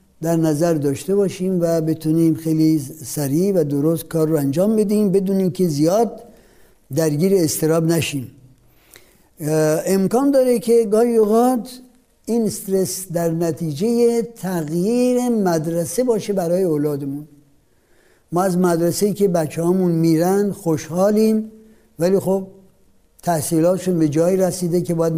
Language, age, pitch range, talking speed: Persian, 60-79, 160-200 Hz, 120 wpm